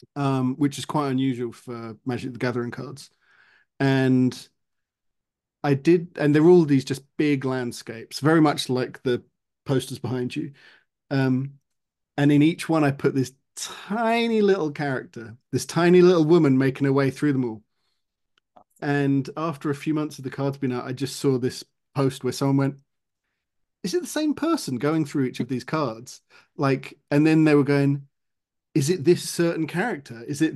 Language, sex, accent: English, male, British